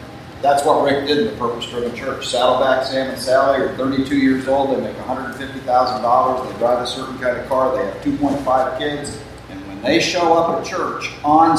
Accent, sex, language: American, male, English